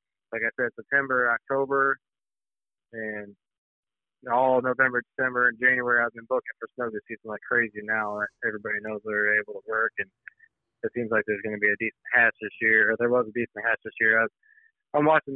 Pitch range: 110-140 Hz